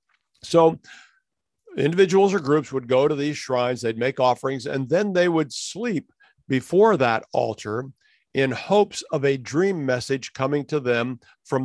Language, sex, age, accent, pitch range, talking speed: English, male, 50-69, American, 125-145 Hz, 155 wpm